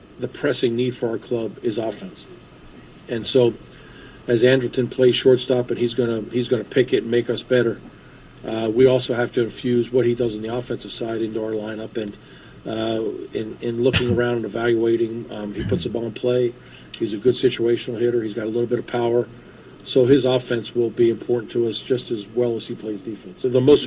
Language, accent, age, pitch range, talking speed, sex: English, American, 50-69, 115-130 Hz, 220 wpm, male